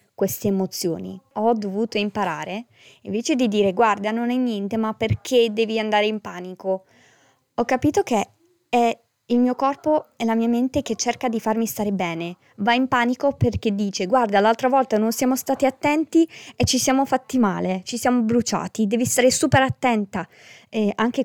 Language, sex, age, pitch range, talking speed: Italian, female, 20-39, 195-255 Hz, 170 wpm